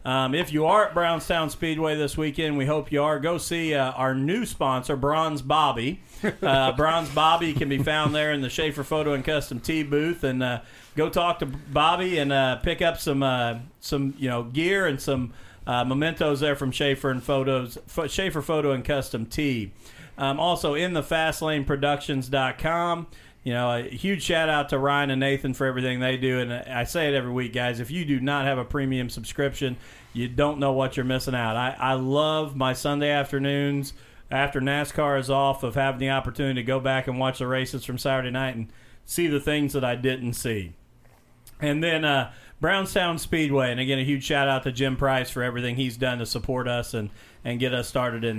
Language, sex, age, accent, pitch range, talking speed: English, male, 40-59, American, 125-150 Hz, 210 wpm